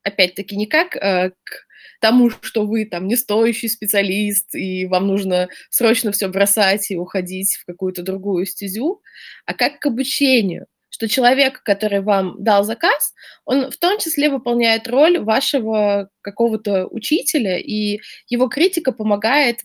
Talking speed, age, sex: 145 wpm, 20-39, female